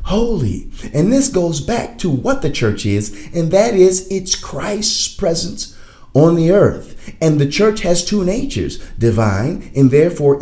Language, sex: English, male